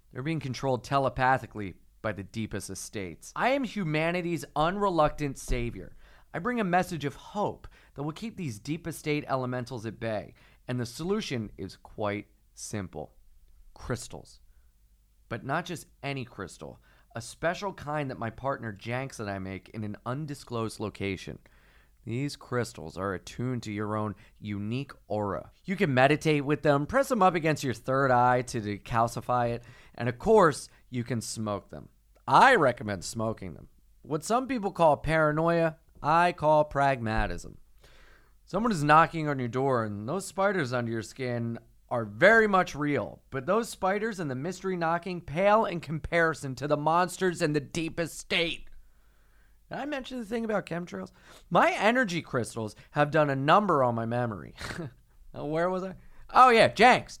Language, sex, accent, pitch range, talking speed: English, male, American, 110-165 Hz, 160 wpm